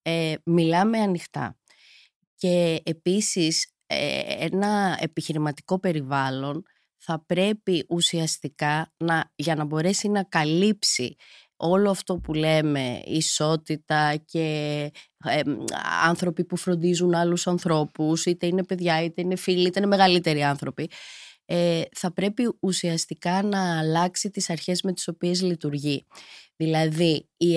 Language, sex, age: Greek, female, 20-39